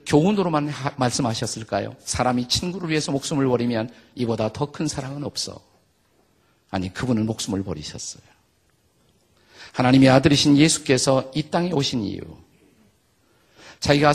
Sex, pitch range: male, 115-155 Hz